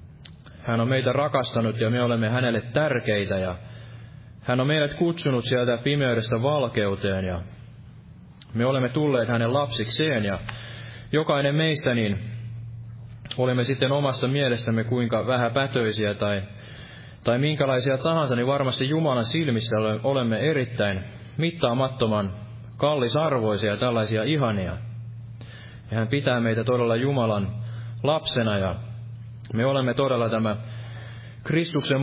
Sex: male